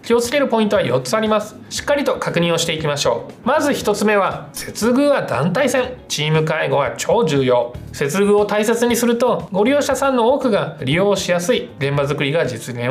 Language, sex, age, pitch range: Japanese, male, 20-39, 155-230 Hz